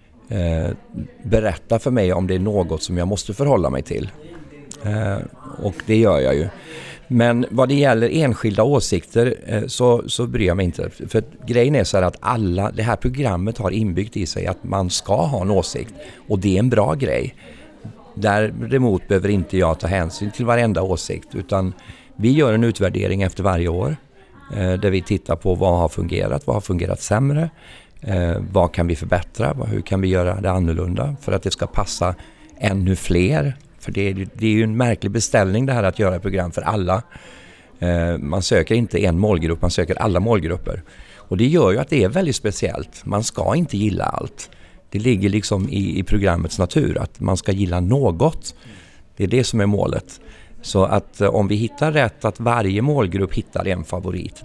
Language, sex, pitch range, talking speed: Swedish, male, 90-115 Hz, 185 wpm